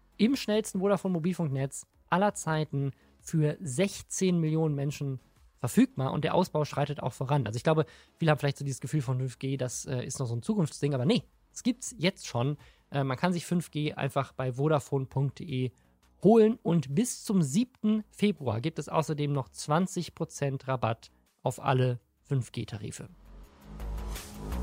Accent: German